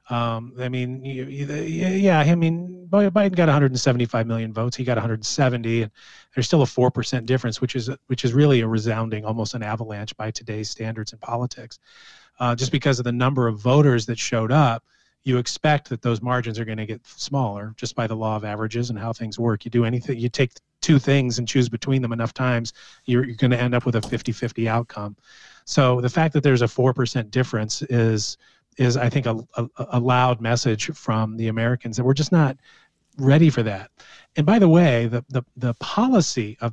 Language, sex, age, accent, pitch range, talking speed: English, male, 30-49, American, 115-135 Hz, 200 wpm